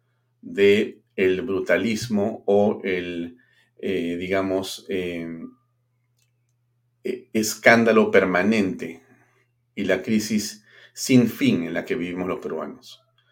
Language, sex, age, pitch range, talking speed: Spanish, male, 40-59, 100-120 Hz, 95 wpm